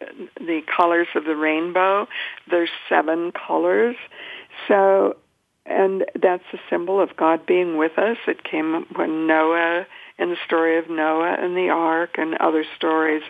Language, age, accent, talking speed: English, 60-79, American, 150 wpm